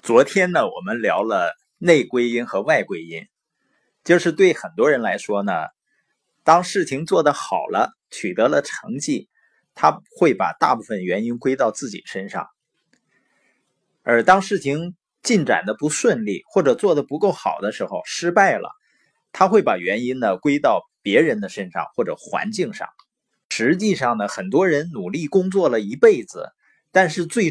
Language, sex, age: Chinese, male, 20-39